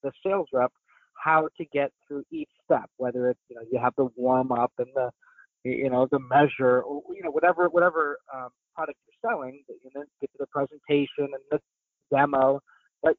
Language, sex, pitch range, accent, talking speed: English, male, 135-165 Hz, American, 195 wpm